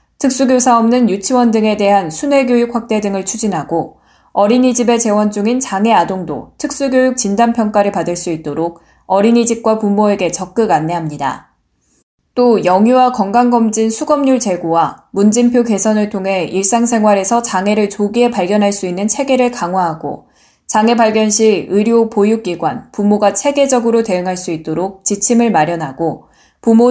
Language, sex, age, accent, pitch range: Korean, female, 10-29, native, 185-240 Hz